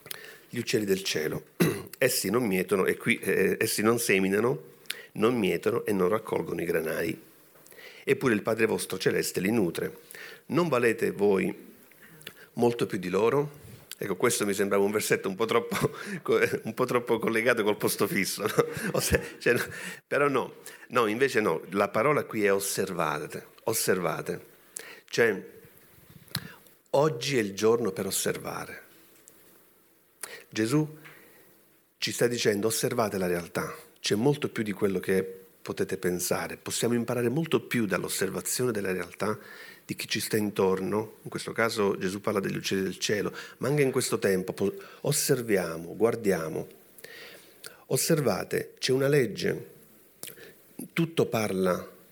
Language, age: Italian, 50-69